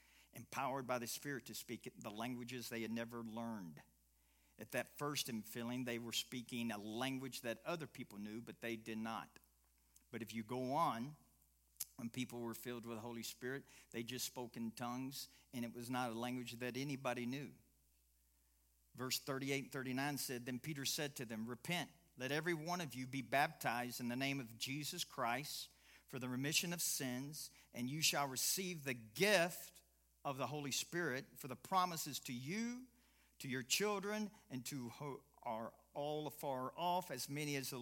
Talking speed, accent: 180 wpm, American